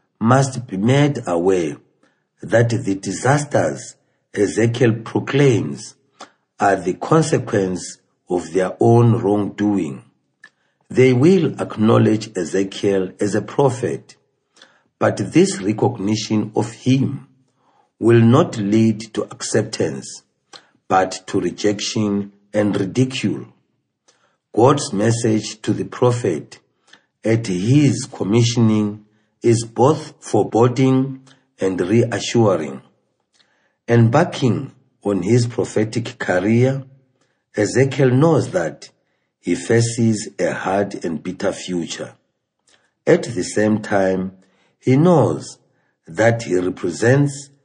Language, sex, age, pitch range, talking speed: English, male, 50-69, 100-130 Hz, 95 wpm